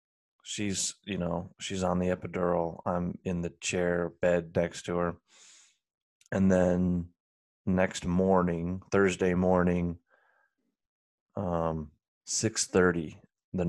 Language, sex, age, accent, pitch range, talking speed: English, male, 30-49, American, 85-95 Hz, 110 wpm